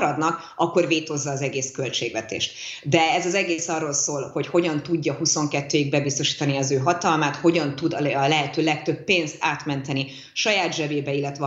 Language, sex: Hungarian, female